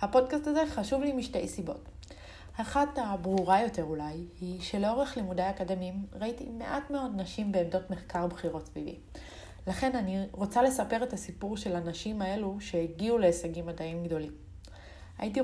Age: 30-49